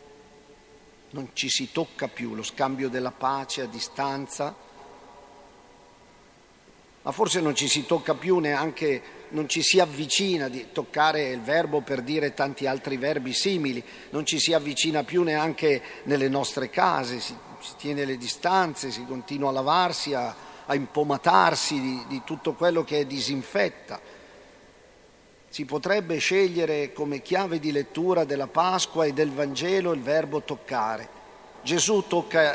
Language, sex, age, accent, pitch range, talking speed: Italian, male, 50-69, native, 140-180 Hz, 140 wpm